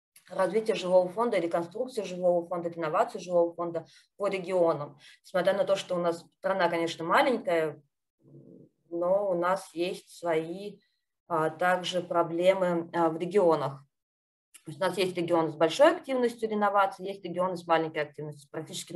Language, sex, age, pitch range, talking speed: Ukrainian, female, 20-39, 170-200 Hz, 150 wpm